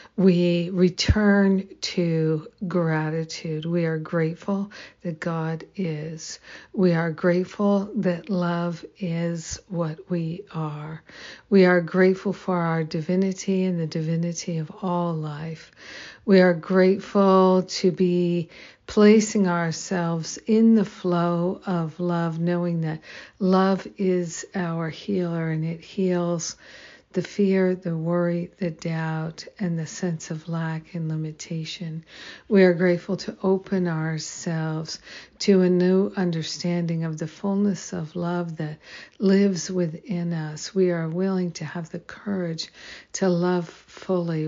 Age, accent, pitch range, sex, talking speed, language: 60-79, American, 165-190 Hz, female, 125 wpm, English